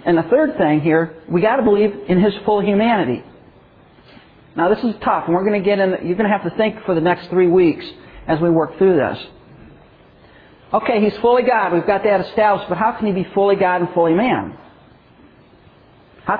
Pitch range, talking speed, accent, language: 175-210 Hz, 215 wpm, American, English